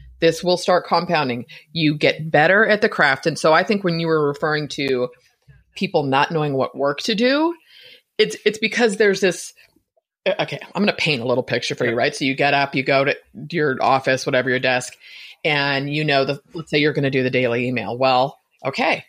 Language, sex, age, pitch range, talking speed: English, female, 30-49, 140-205 Hz, 215 wpm